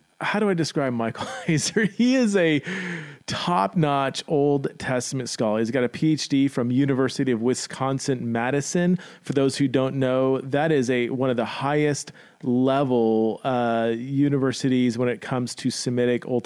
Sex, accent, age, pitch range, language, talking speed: male, American, 40-59, 120-155 Hz, English, 155 wpm